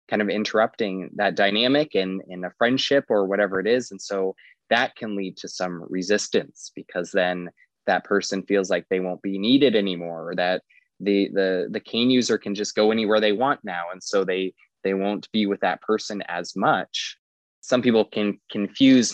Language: English